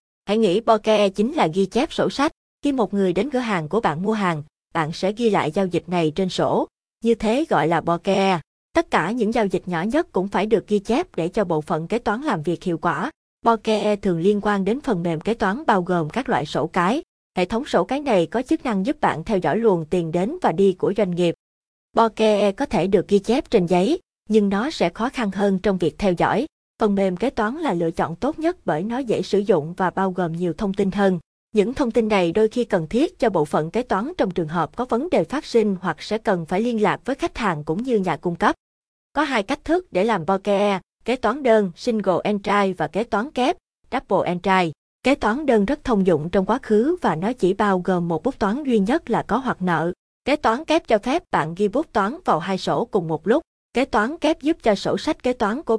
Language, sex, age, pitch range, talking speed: Vietnamese, female, 20-39, 185-235 Hz, 245 wpm